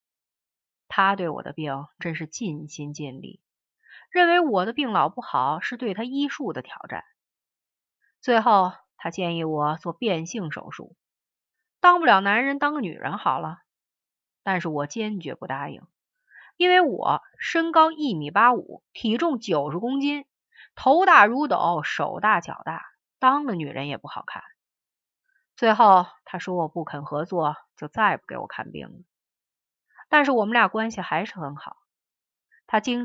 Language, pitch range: Chinese, 160-255 Hz